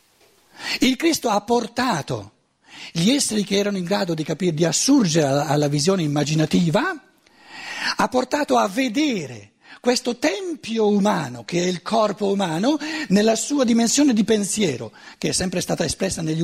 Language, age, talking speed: Italian, 60-79, 145 wpm